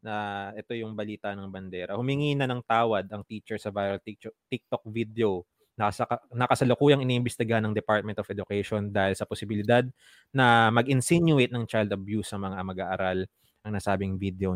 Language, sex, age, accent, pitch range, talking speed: Filipino, male, 20-39, native, 100-125 Hz, 150 wpm